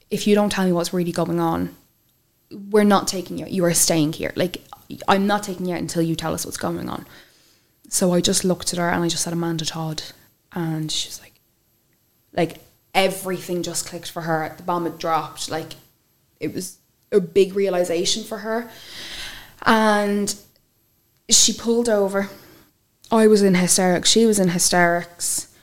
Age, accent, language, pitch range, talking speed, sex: 10-29, Irish, English, 160-195 Hz, 180 wpm, female